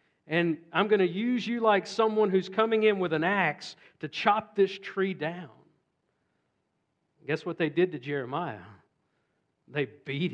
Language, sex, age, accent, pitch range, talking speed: Finnish, male, 50-69, American, 145-190 Hz, 155 wpm